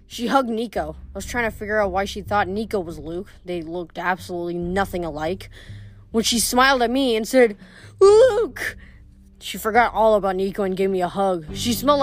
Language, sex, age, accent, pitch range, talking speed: English, female, 20-39, American, 195-250 Hz, 200 wpm